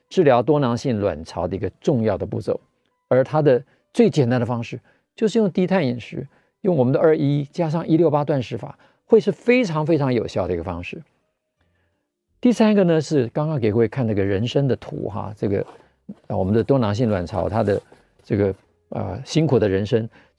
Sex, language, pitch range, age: male, Chinese, 105-155 Hz, 50-69